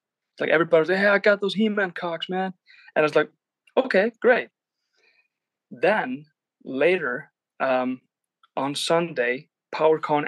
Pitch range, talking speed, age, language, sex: 135-185 Hz, 130 wpm, 20-39, English, male